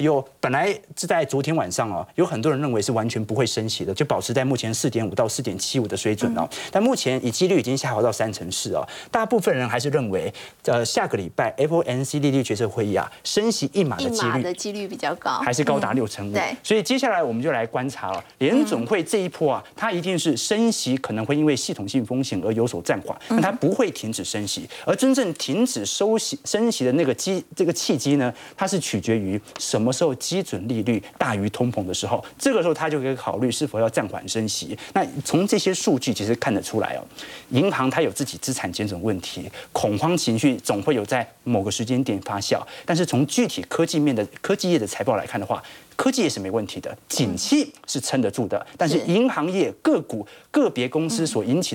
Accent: native